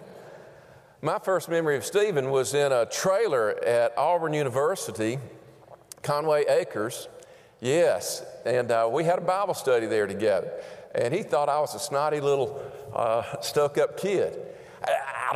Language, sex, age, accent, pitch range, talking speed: English, male, 50-69, American, 115-175 Hz, 145 wpm